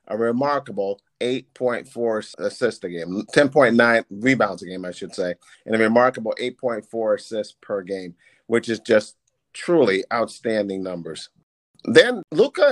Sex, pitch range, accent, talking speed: male, 120-155 Hz, American, 130 wpm